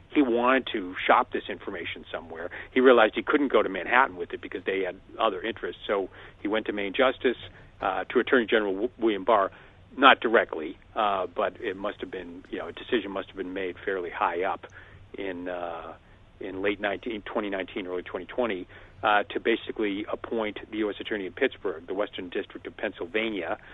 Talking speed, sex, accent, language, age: 185 wpm, male, American, English, 50-69